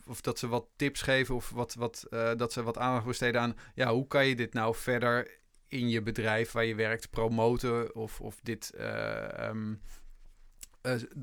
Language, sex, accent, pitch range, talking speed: Dutch, male, Dutch, 105-120 Hz, 170 wpm